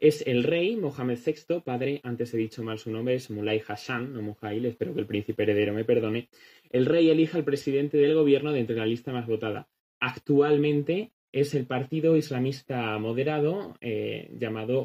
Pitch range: 120-155 Hz